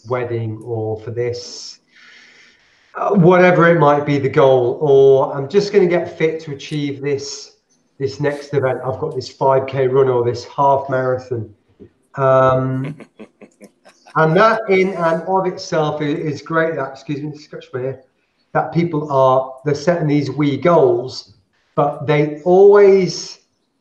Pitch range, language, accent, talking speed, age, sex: 130-170 Hz, English, British, 145 wpm, 30-49, male